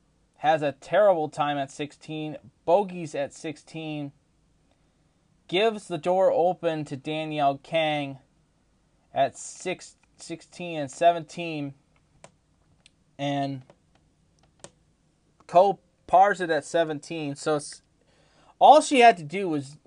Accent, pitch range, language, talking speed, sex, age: American, 145-180 Hz, English, 105 wpm, male, 20-39